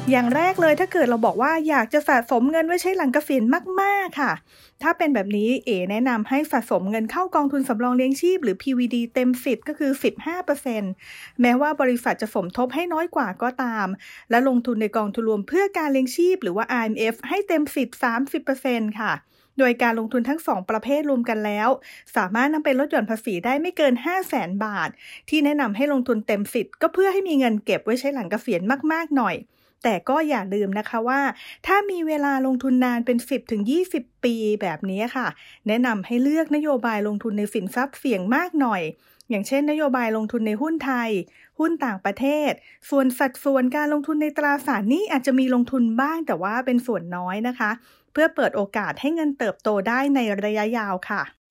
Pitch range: 225-295 Hz